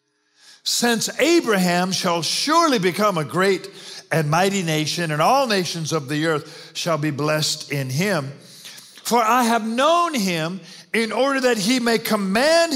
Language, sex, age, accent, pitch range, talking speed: English, male, 50-69, American, 160-225 Hz, 150 wpm